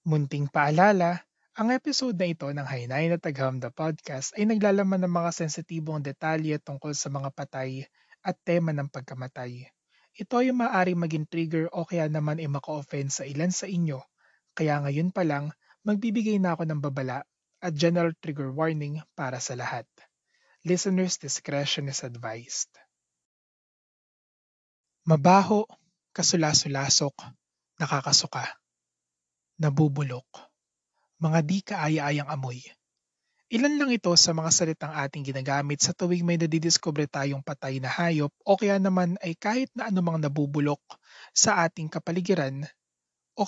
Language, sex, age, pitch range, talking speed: English, male, 20-39, 140-180 Hz, 135 wpm